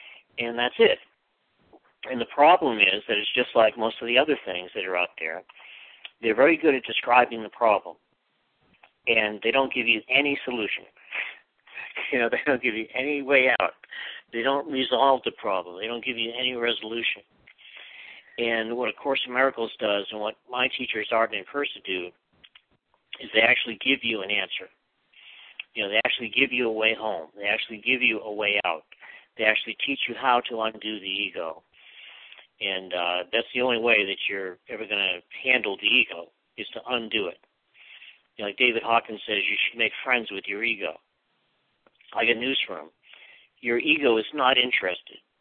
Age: 50-69